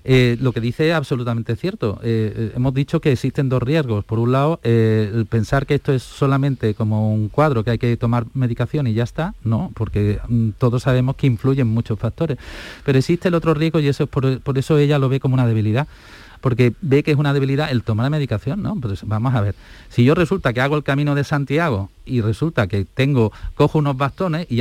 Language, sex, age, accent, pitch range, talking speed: Spanish, male, 40-59, Spanish, 115-150 Hz, 220 wpm